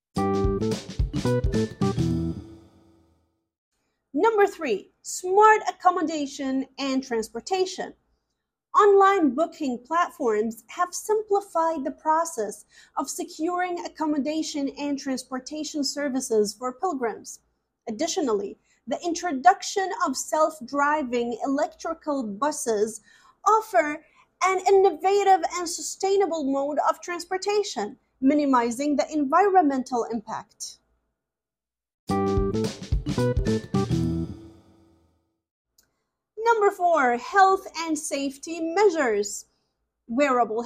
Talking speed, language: 70 wpm, English